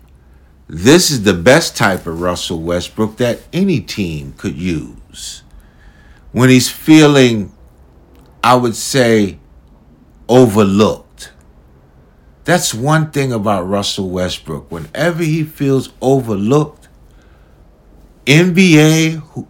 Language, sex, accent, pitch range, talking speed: English, male, American, 85-135 Hz, 95 wpm